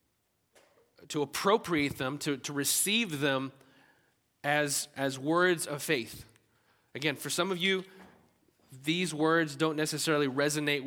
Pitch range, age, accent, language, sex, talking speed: 120-155 Hz, 30-49, American, English, male, 120 wpm